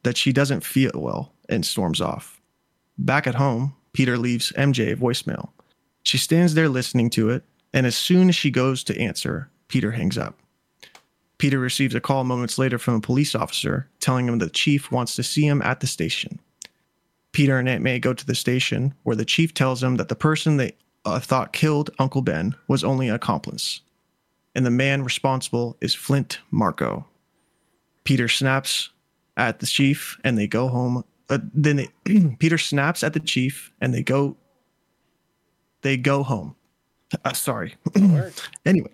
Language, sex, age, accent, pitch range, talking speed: English, male, 30-49, American, 125-140 Hz, 170 wpm